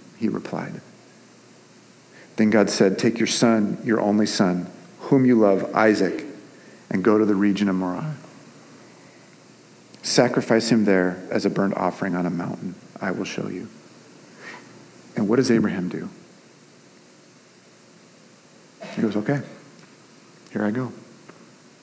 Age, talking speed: 40-59, 130 wpm